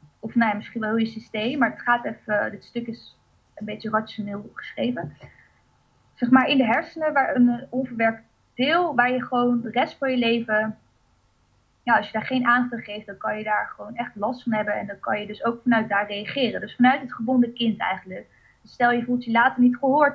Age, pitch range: 20-39, 215-250 Hz